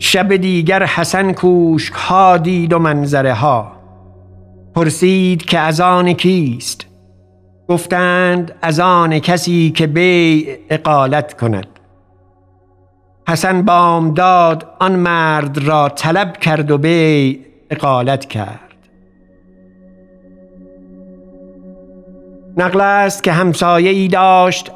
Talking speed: 95 wpm